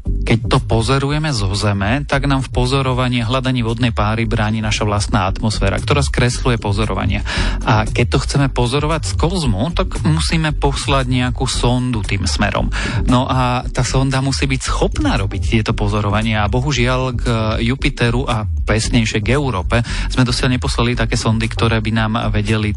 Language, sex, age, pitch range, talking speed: Slovak, male, 30-49, 105-125 Hz, 160 wpm